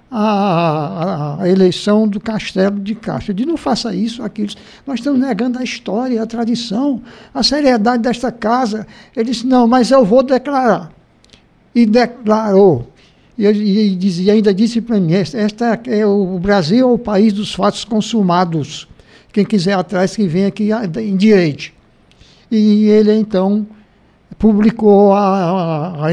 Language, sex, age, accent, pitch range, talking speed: Portuguese, male, 60-79, Brazilian, 185-235 Hz, 140 wpm